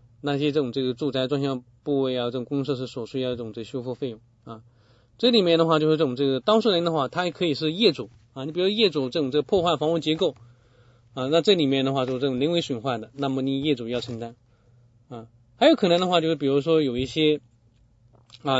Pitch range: 120-155 Hz